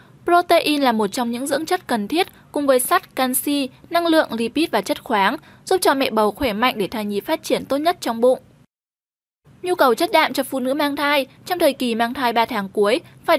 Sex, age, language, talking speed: female, 10-29, Vietnamese, 235 wpm